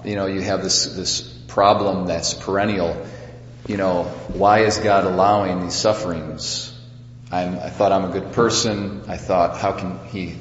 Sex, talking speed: male, 165 wpm